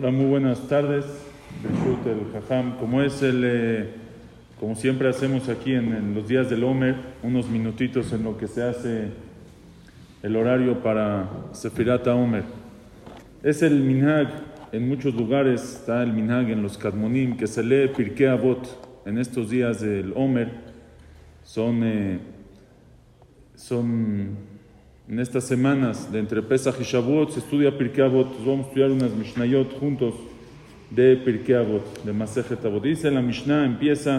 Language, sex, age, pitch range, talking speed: English, male, 40-59, 115-135 Hz, 140 wpm